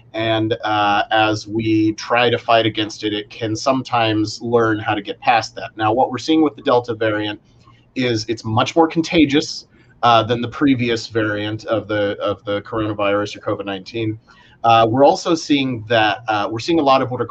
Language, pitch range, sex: English, 110-135 Hz, male